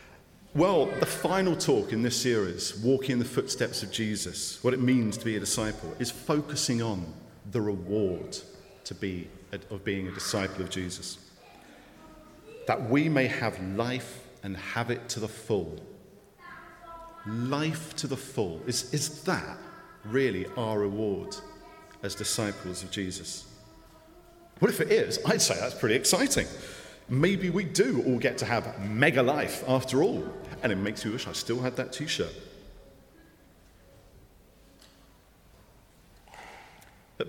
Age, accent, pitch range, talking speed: 40-59, British, 105-155 Hz, 145 wpm